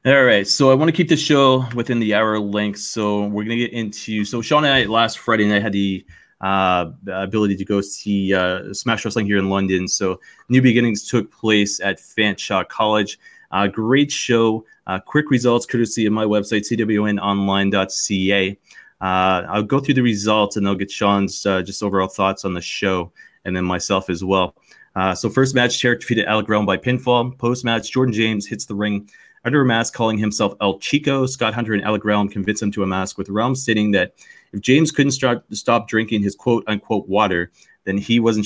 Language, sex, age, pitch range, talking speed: English, male, 30-49, 100-120 Hz, 200 wpm